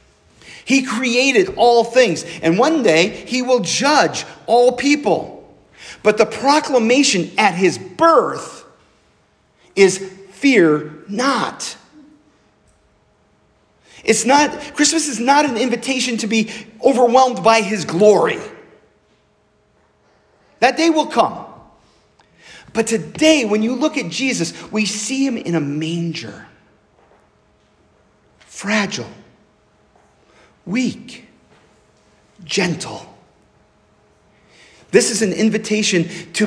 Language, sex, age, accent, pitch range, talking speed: English, male, 40-59, American, 155-240 Hz, 100 wpm